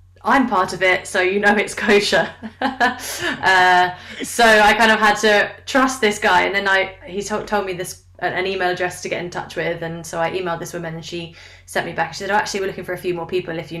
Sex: female